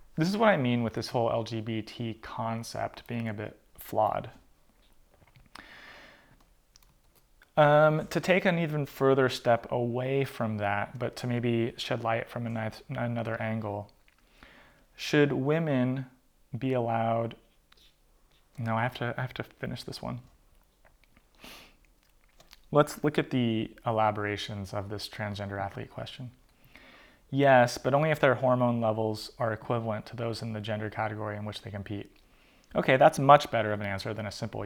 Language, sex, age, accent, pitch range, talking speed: English, male, 30-49, American, 110-130 Hz, 145 wpm